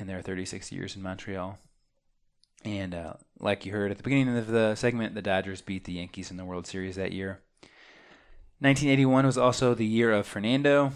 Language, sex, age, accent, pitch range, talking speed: English, male, 20-39, American, 95-120 Hz, 185 wpm